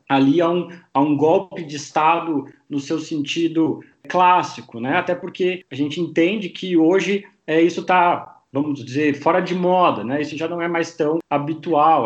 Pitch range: 150-190 Hz